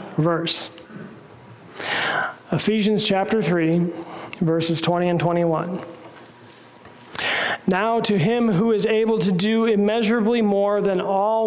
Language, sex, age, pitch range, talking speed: English, male, 40-59, 175-210 Hz, 105 wpm